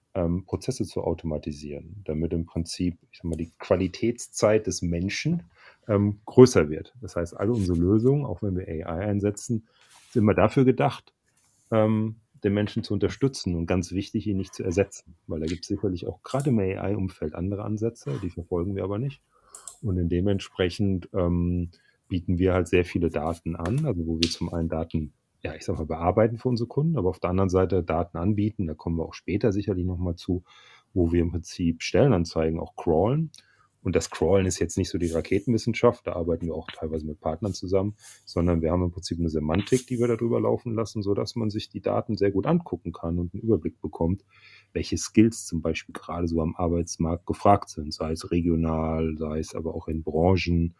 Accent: German